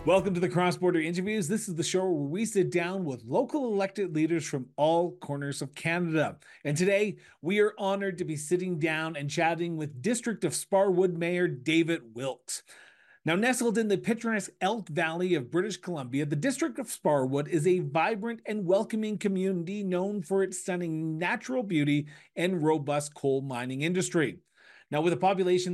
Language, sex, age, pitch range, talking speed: English, male, 30-49, 155-195 Hz, 175 wpm